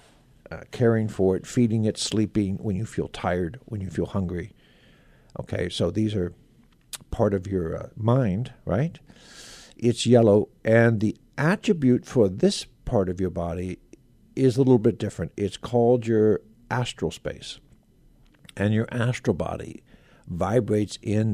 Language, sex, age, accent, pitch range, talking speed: English, male, 60-79, American, 100-125 Hz, 145 wpm